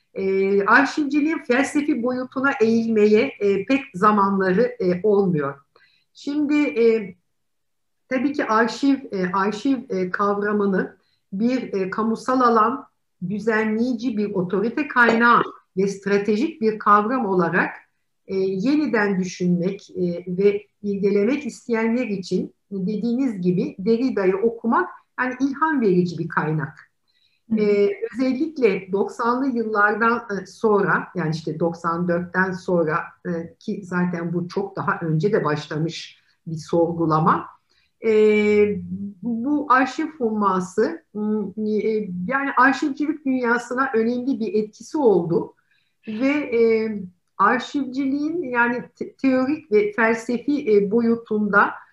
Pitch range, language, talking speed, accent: 190-250 Hz, Turkish, 95 wpm, native